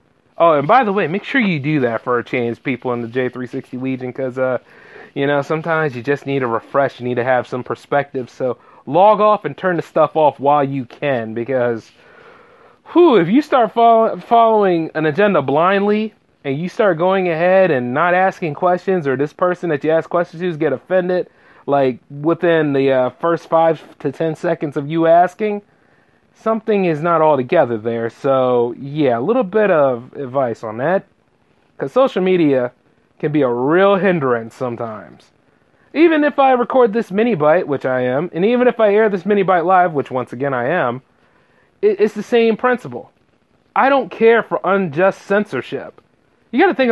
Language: English